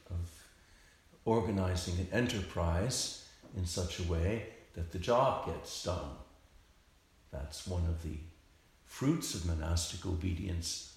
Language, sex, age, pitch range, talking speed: English, male, 60-79, 80-95 Hz, 115 wpm